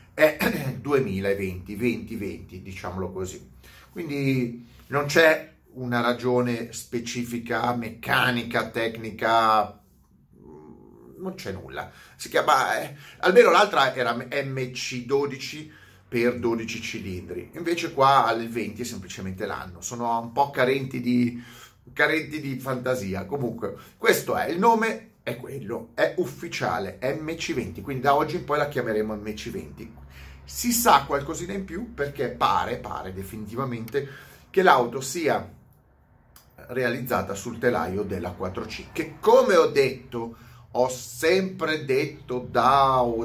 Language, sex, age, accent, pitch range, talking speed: Italian, male, 30-49, native, 110-140 Hz, 120 wpm